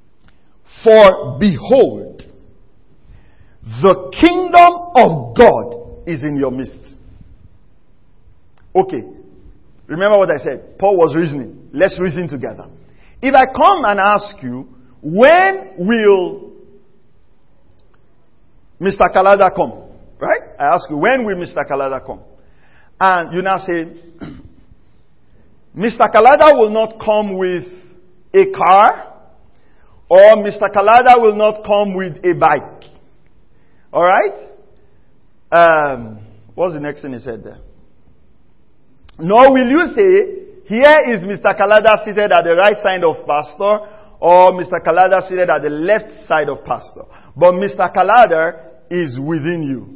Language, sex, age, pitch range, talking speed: English, male, 50-69, 160-220 Hz, 125 wpm